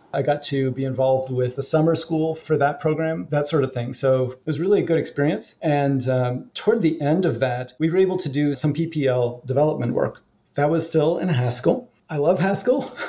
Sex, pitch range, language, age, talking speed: male, 130-160 Hz, English, 30-49, 215 wpm